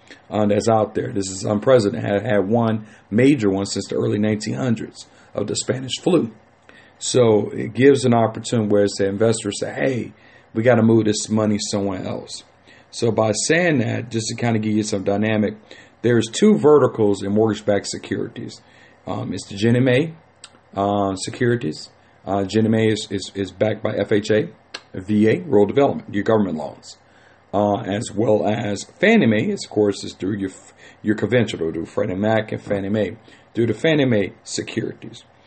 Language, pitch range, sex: English, 105-120 Hz, male